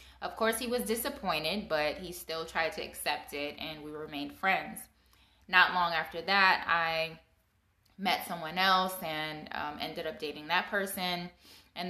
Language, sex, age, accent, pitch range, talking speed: English, female, 20-39, American, 160-185 Hz, 160 wpm